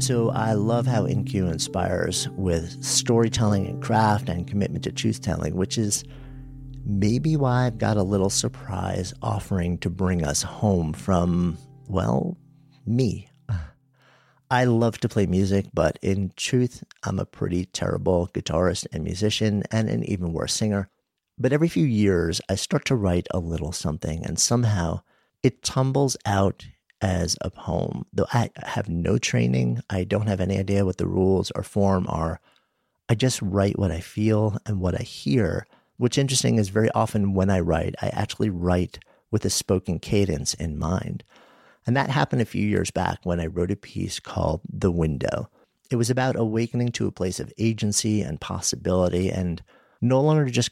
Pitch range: 90-120 Hz